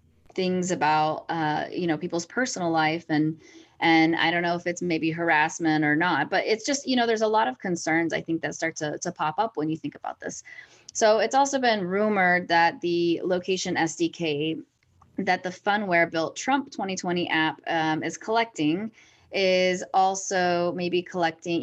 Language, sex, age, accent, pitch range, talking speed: English, female, 20-39, American, 155-185 Hz, 180 wpm